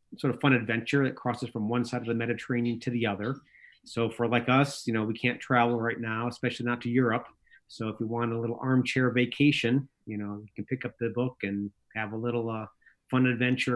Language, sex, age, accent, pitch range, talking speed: English, male, 40-59, American, 115-130 Hz, 230 wpm